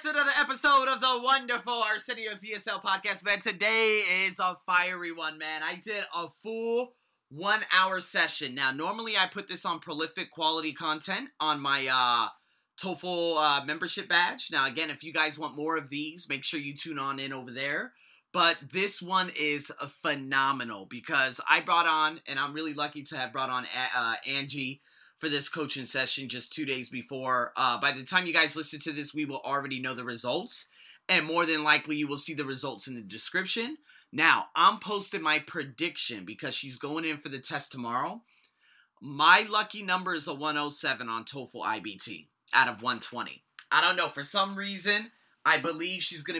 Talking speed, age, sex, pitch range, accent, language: 185 wpm, 20-39, male, 140-185 Hz, American, English